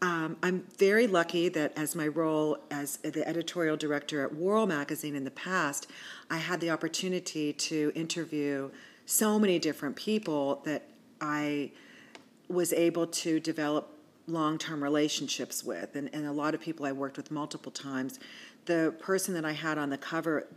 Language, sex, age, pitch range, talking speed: English, female, 40-59, 145-170 Hz, 165 wpm